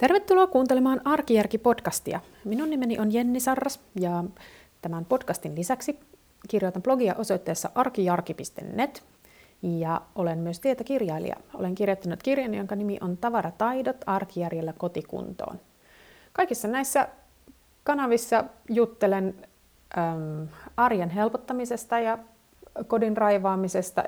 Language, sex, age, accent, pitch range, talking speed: Finnish, female, 30-49, native, 180-245 Hz, 95 wpm